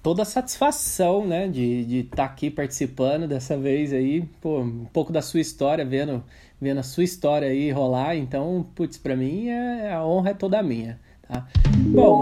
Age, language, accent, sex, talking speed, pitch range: 20-39, Portuguese, Brazilian, male, 185 wpm, 135-185 Hz